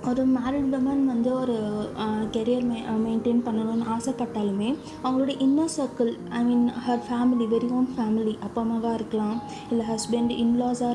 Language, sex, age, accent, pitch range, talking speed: Tamil, female, 20-39, native, 230-265 Hz, 145 wpm